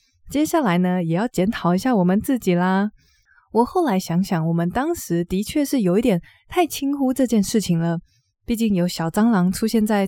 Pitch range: 175-235 Hz